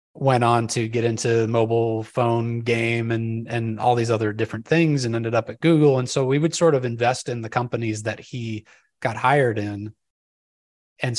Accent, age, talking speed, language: American, 30-49, 195 wpm, English